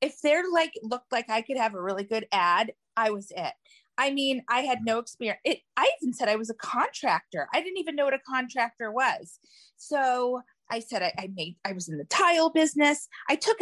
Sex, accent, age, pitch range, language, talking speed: female, American, 30-49, 205-275 Hz, English, 220 wpm